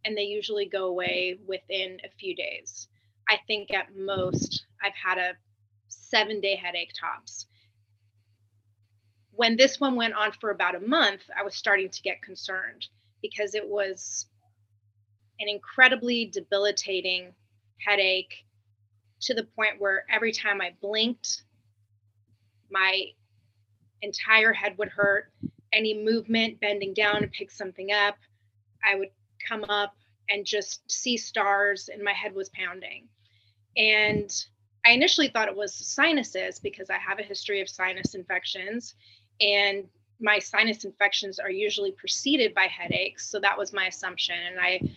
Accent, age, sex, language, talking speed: American, 20-39, female, English, 145 wpm